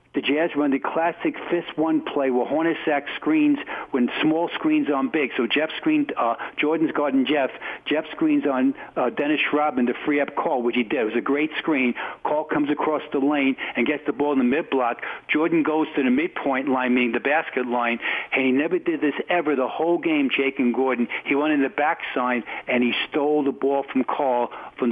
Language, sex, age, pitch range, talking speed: English, male, 50-69, 125-155 Hz, 215 wpm